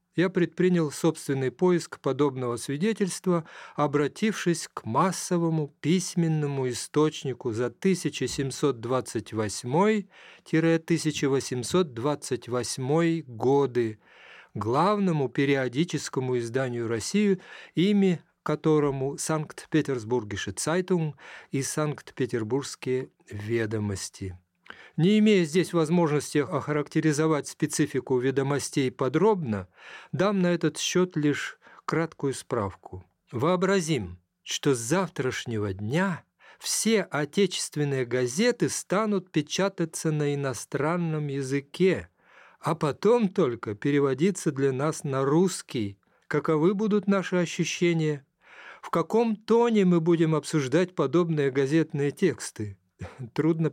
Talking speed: 85 wpm